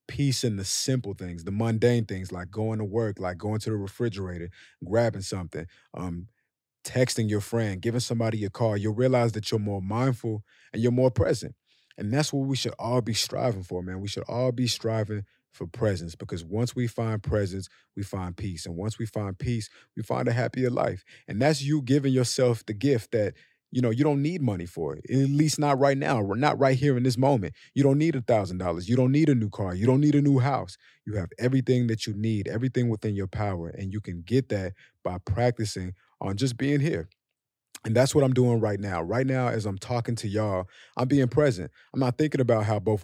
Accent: American